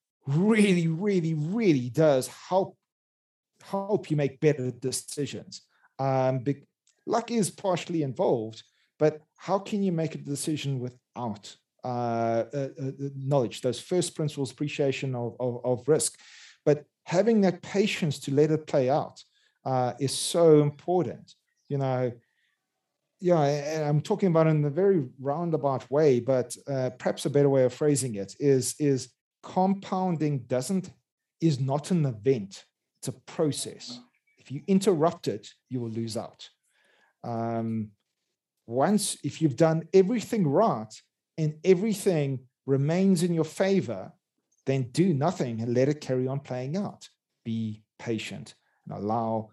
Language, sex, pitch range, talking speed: English, male, 125-175 Hz, 140 wpm